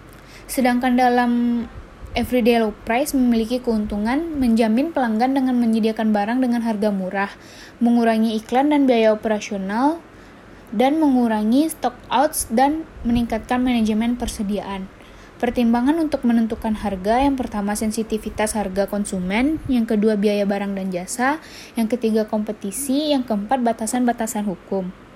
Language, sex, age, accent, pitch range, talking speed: Indonesian, female, 10-29, native, 220-255 Hz, 120 wpm